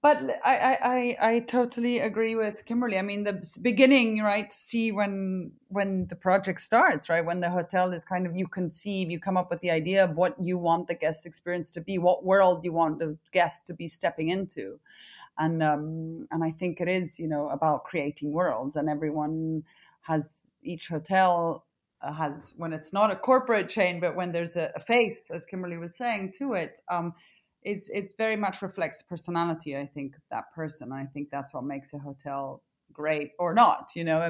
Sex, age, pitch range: female, 30-49, 155-195 Hz